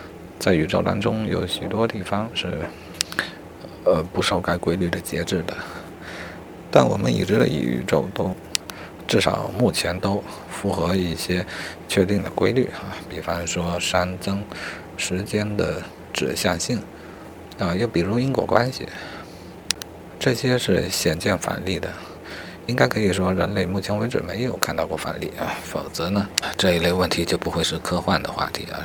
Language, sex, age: Chinese, male, 50-69